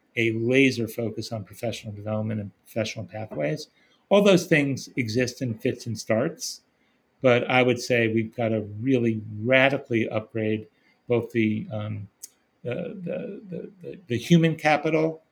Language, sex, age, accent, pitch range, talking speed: English, male, 40-59, American, 110-135 Hz, 140 wpm